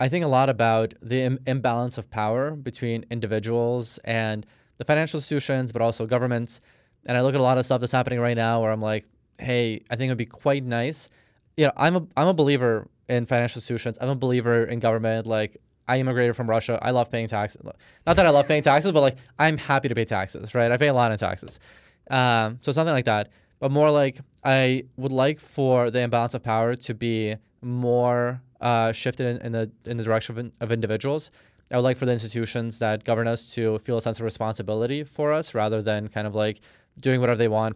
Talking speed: 225 wpm